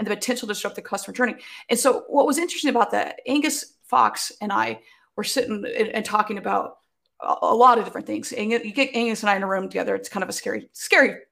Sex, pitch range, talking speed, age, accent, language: female, 200-250 Hz, 240 wpm, 30-49, American, English